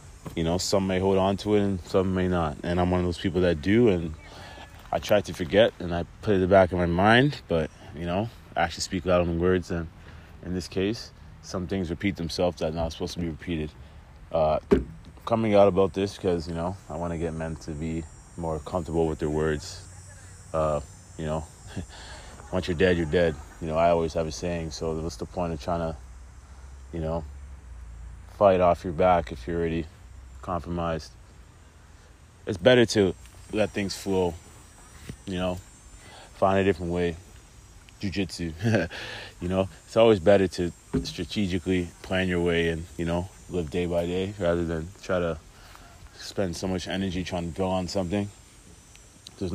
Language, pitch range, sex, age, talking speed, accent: English, 85-95 Hz, male, 30-49, 190 wpm, American